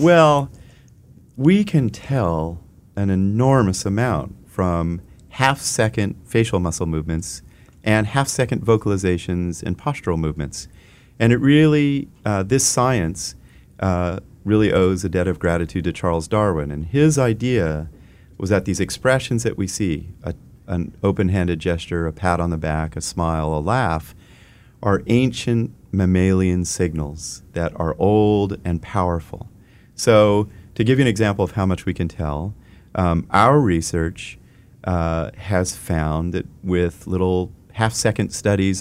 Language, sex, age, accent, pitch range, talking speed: English, male, 40-59, American, 85-115 Hz, 135 wpm